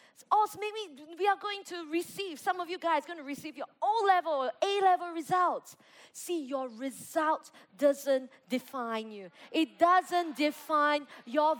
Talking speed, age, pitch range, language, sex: 155 wpm, 20-39, 260-360 Hz, English, female